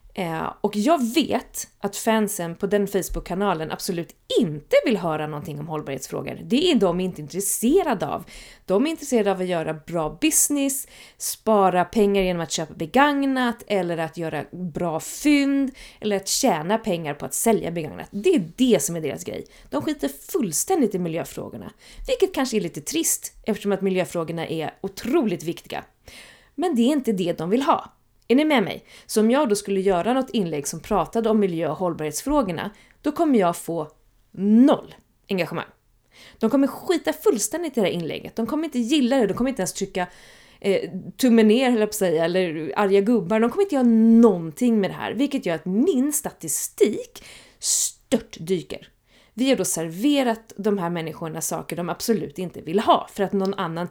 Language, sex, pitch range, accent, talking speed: Swedish, female, 170-250 Hz, native, 175 wpm